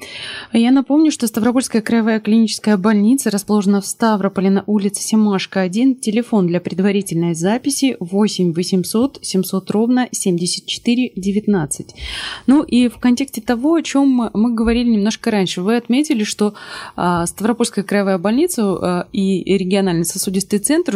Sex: female